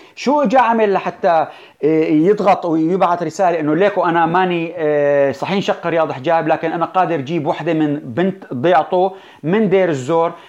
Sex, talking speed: male, 150 wpm